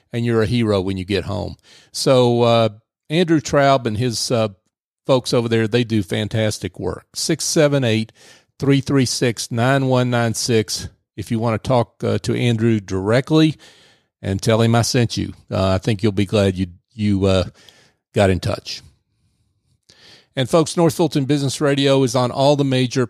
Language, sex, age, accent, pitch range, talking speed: English, male, 50-69, American, 105-130 Hz, 160 wpm